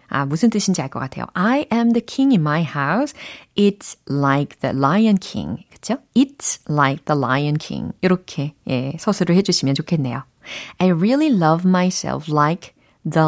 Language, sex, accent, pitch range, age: Korean, female, native, 150-220 Hz, 40-59